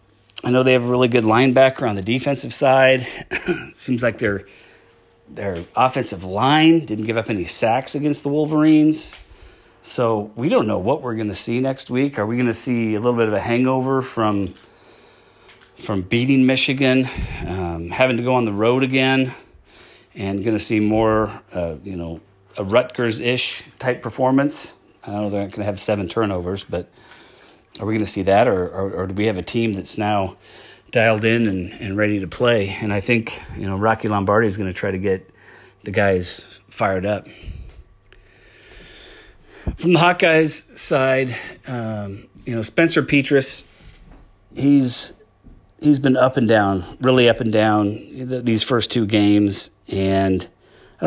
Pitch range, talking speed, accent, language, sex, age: 100-130 Hz, 175 wpm, American, English, male, 30-49